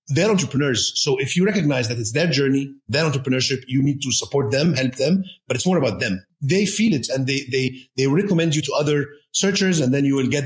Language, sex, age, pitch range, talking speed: English, male, 40-59, 125-155 Hz, 235 wpm